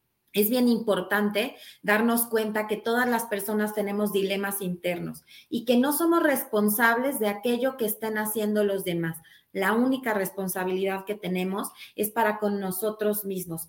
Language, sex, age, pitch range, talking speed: Spanish, female, 30-49, 200-240 Hz, 150 wpm